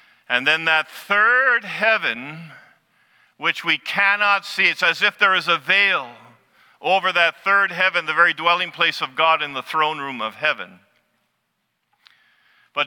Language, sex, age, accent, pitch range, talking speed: English, male, 50-69, American, 160-200 Hz, 155 wpm